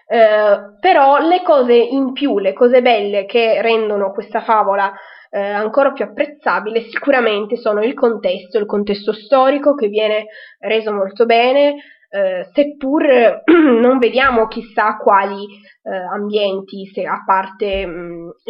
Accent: native